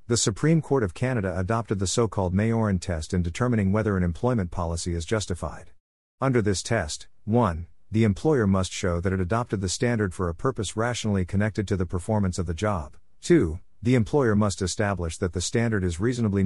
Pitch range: 90-115 Hz